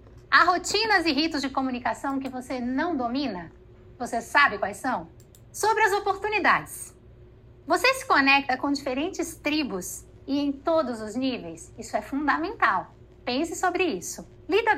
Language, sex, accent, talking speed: Portuguese, female, Brazilian, 140 wpm